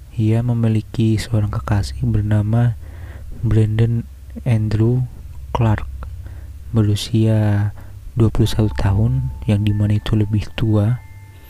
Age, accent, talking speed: 20-39, native, 85 wpm